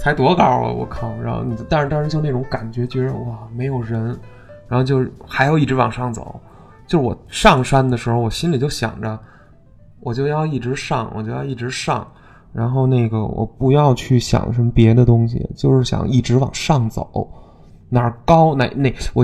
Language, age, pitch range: Chinese, 20-39, 115-150 Hz